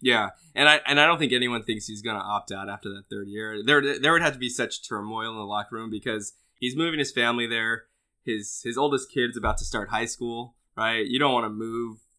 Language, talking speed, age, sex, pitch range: English, 250 wpm, 10-29, male, 105-120 Hz